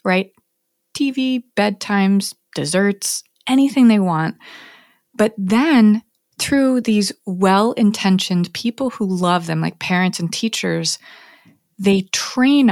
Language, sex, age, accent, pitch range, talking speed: English, female, 20-39, American, 170-215 Hz, 105 wpm